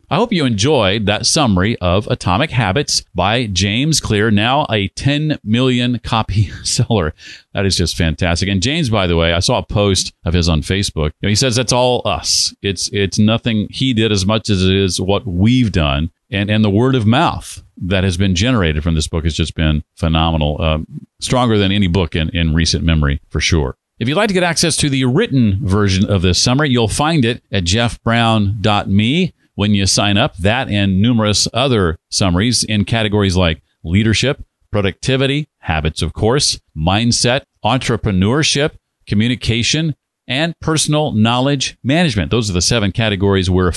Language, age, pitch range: English, 40-59, 95-125 Hz